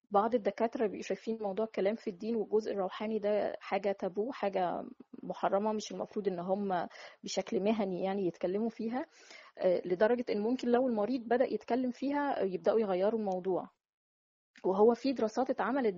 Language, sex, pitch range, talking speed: Arabic, female, 190-235 Hz, 145 wpm